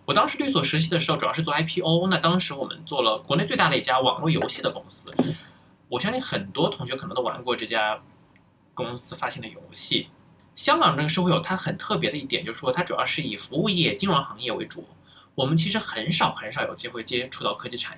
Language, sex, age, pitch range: Chinese, male, 20-39, 150-185 Hz